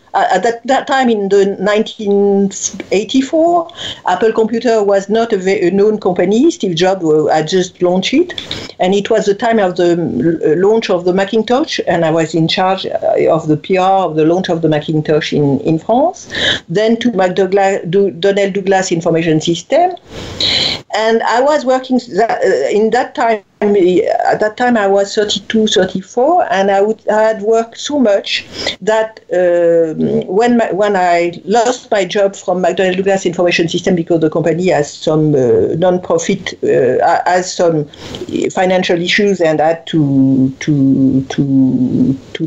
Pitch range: 175-230 Hz